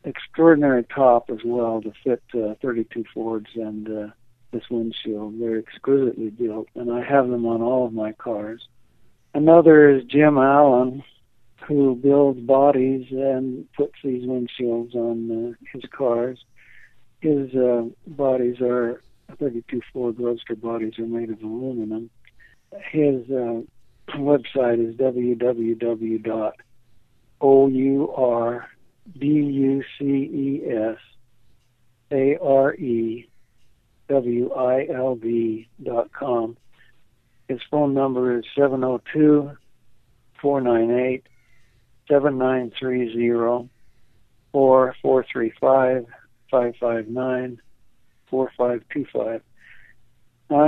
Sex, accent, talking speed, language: male, American, 75 wpm, English